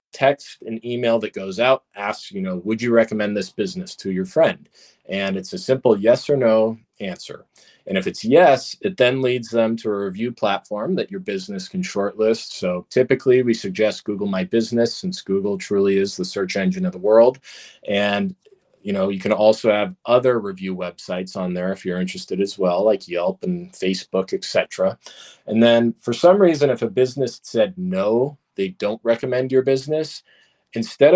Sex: male